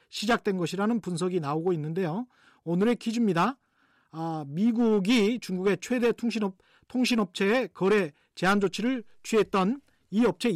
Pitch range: 175-235 Hz